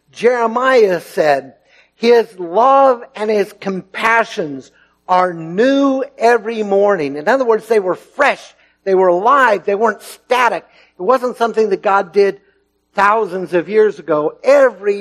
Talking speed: 135 wpm